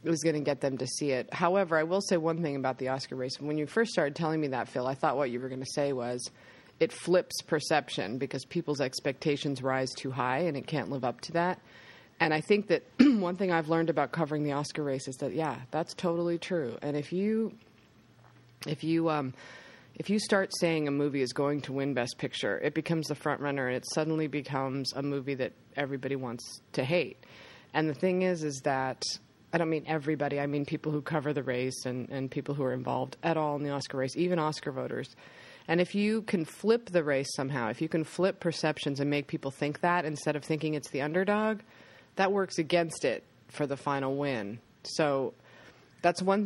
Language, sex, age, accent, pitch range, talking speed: English, female, 30-49, American, 135-165 Hz, 220 wpm